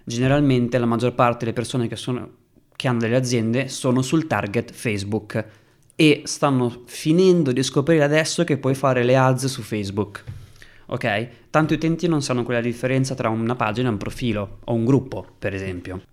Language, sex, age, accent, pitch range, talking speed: Italian, male, 20-39, native, 115-140 Hz, 175 wpm